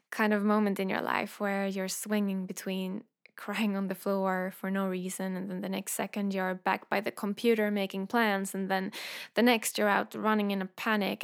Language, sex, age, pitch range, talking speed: English, female, 10-29, 200-235 Hz, 210 wpm